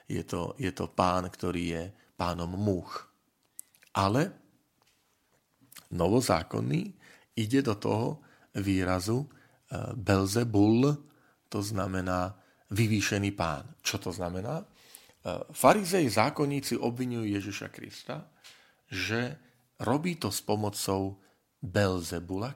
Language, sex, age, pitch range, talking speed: Slovak, male, 40-59, 95-130 Hz, 95 wpm